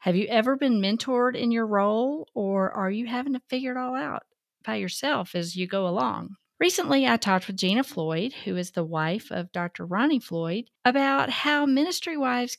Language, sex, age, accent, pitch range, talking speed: English, female, 40-59, American, 180-245 Hz, 195 wpm